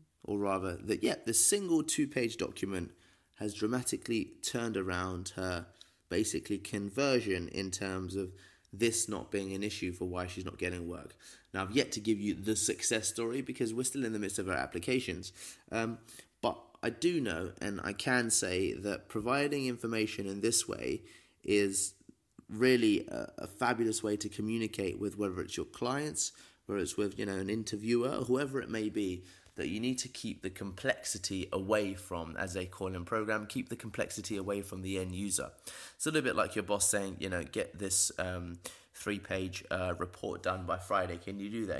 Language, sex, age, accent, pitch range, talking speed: English, male, 20-39, British, 95-115 Hz, 185 wpm